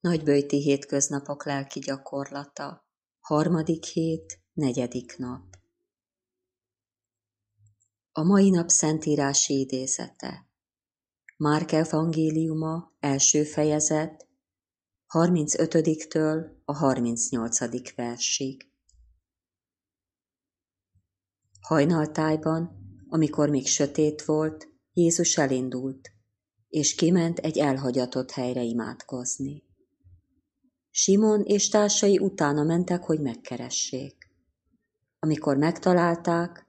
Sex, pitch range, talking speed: female, 125-160 Hz, 70 wpm